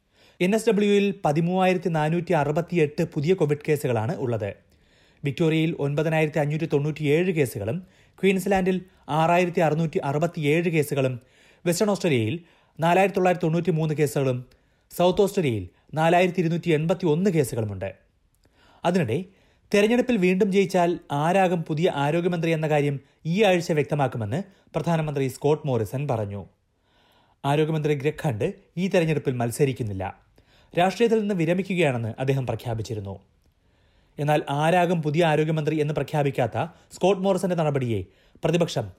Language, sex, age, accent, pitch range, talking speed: Malayalam, male, 30-49, native, 130-175 Hz, 105 wpm